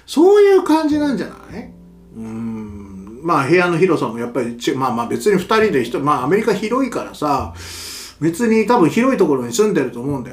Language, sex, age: Japanese, male, 40-59